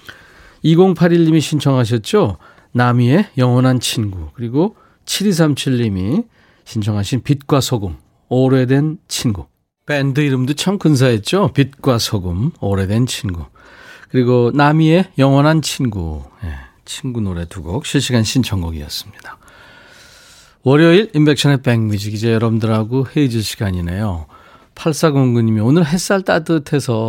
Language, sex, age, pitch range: Korean, male, 40-59, 100-145 Hz